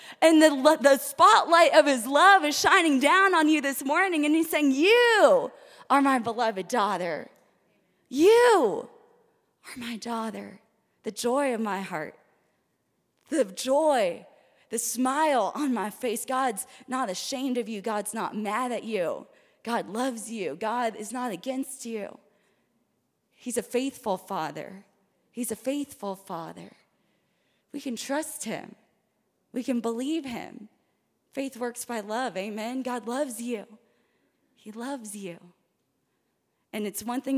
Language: English